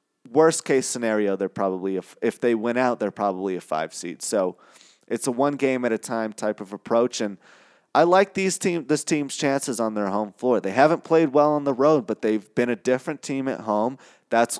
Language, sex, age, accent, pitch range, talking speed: English, male, 30-49, American, 110-140 Hz, 195 wpm